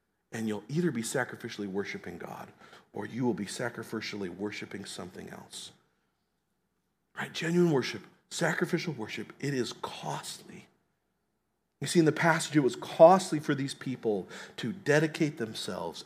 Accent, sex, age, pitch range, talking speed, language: American, male, 40-59, 155-225 Hz, 140 wpm, English